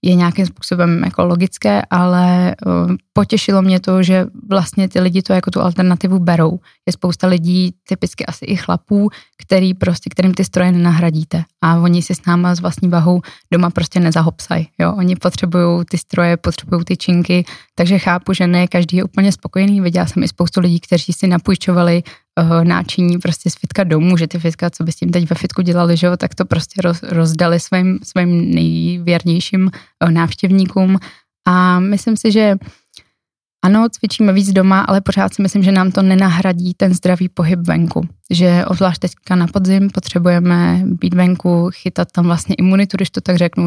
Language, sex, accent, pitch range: Czech, female, native, 175-185 Hz